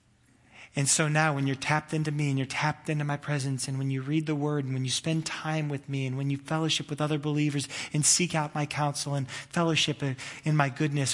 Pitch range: 140-165 Hz